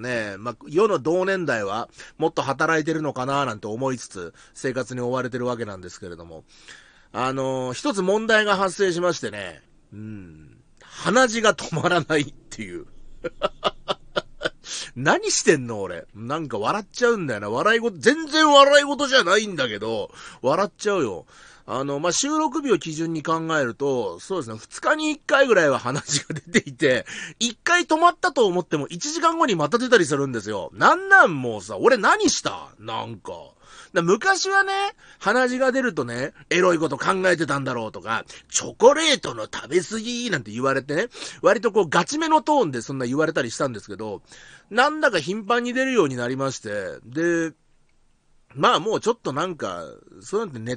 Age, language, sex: 40-59, Japanese, male